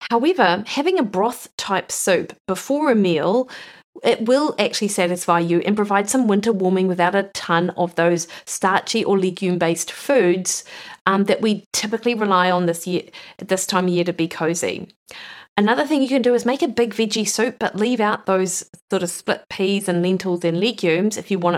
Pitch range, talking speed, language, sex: 180-225 Hz, 185 wpm, English, female